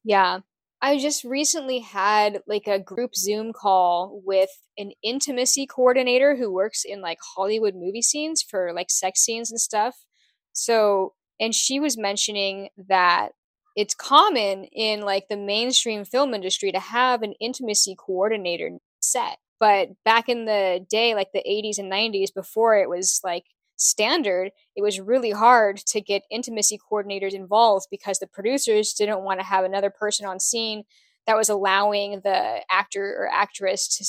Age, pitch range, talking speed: 10-29, 195-235 Hz, 160 wpm